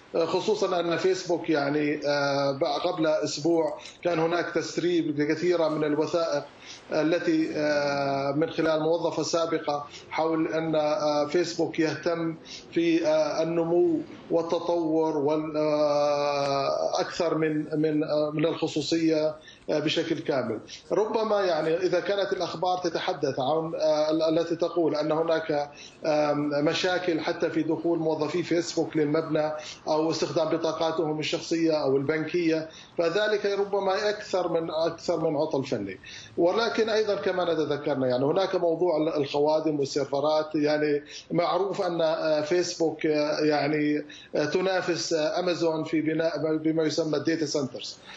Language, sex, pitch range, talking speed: Arabic, male, 155-175 Hz, 105 wpm